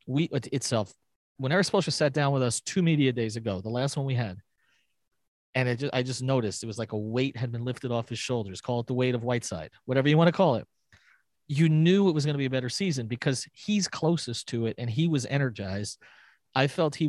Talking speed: 230 wpm